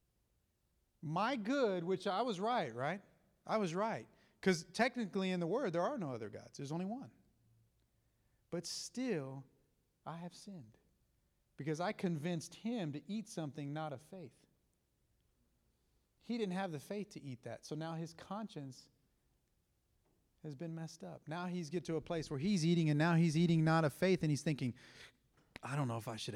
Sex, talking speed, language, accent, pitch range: male, 180 wpm, English, American, 130-170 Hz